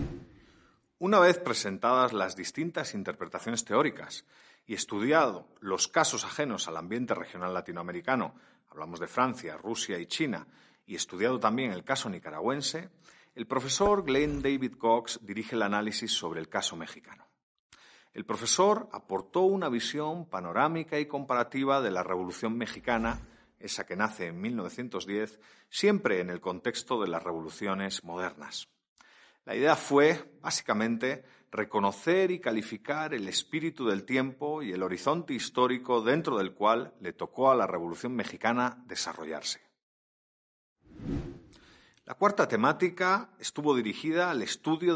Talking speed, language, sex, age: 130 wpm, Spanish, male, 40-59